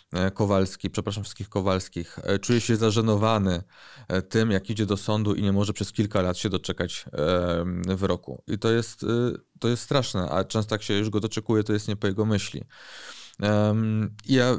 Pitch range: 100-115 Hz